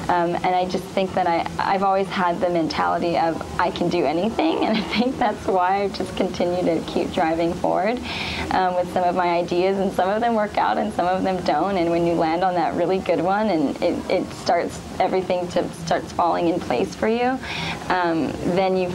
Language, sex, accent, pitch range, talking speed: English, female, American, 170-190 Hz, 220 wpm